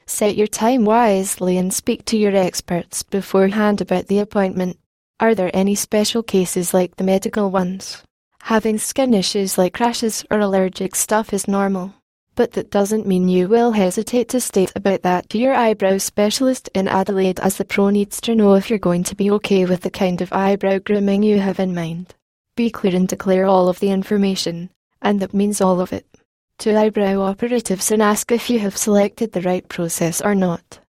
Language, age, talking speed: English, 10-29, 190 wpm